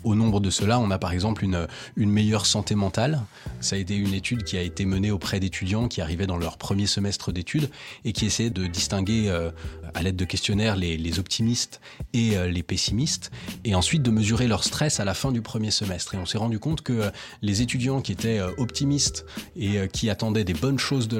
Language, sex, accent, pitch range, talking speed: French, male, French, 95-120 Hz, 230 wpm